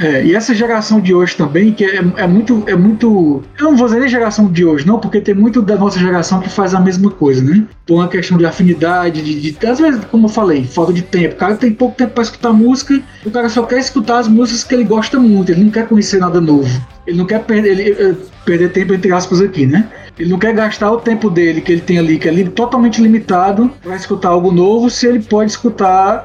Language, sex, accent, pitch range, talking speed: Portuguese, male, Brazilian, 175-220 Hz, 255 wpm